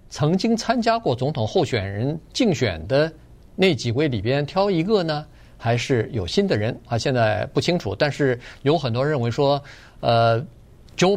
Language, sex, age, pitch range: Chinese, male, 50-69, 115-150 Hz